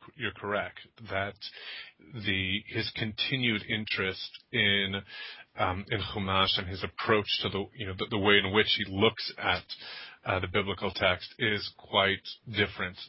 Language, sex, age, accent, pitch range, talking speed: English, male, 30-49, American, 95-110 Hz, 150 wpm